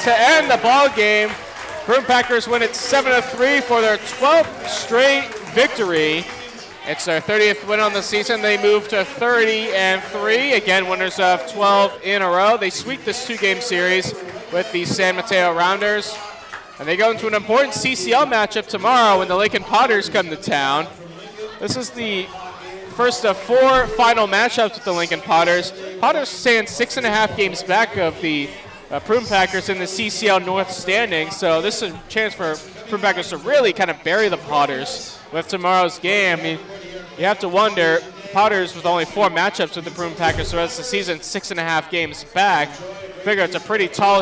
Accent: American